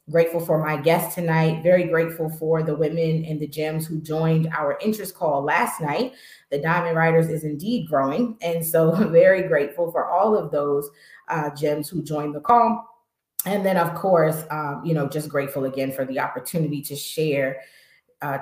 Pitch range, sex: 150-190 Hz, female